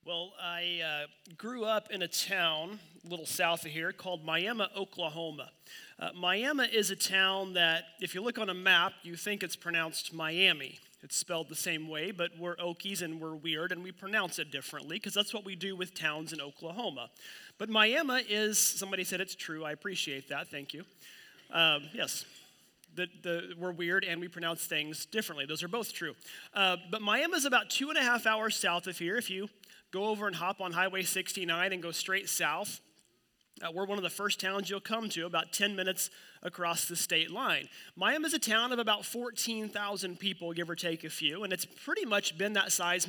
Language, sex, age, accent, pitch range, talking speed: English, male, 30-49, American, 170-205 Hz, 205 wpm